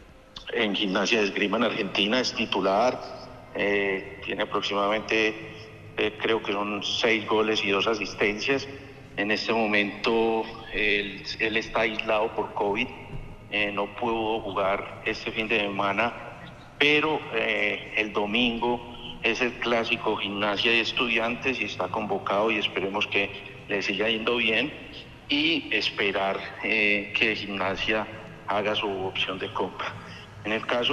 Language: Spanish